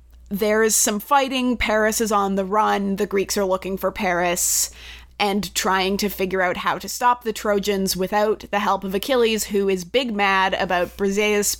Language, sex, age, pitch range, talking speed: English, female, 20-39, 180-215 Hz, 185 wpm